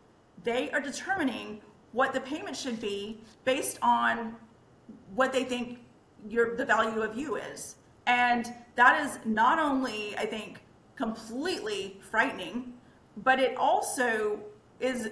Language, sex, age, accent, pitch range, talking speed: English, female, 40-59, American, 225-270 Hz, 125 wpm